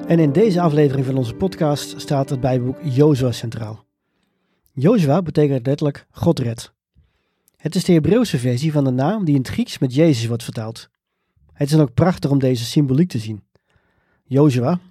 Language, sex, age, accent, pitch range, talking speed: Dutch, male, 40-59, Dutch, 125-160 Hz, 175 wpm